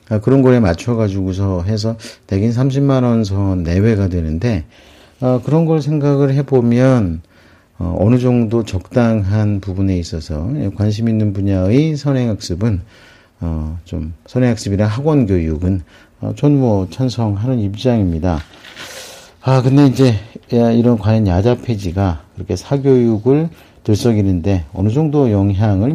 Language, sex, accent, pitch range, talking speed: English, male, Korean, 95-120 Hz, 105 wpm